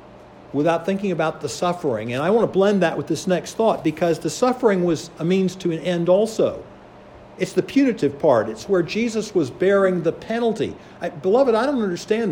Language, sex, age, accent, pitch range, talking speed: English, male, 60-79, American, 155-195 Hz, 195 wpm